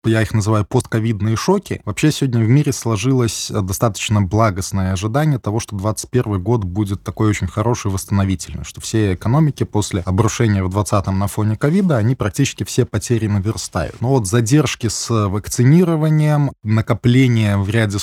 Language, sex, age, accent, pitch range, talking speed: Russian, male, 20-39, native, 105-125 Hz, 150 wpm